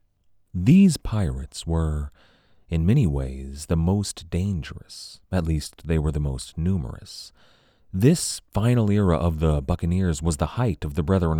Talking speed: 145 wpm